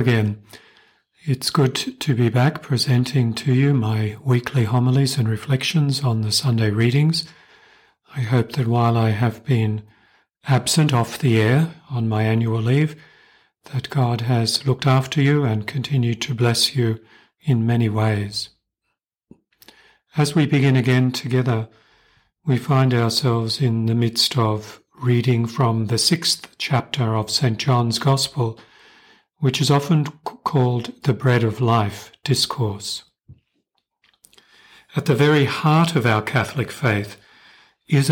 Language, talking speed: English, 135 wpm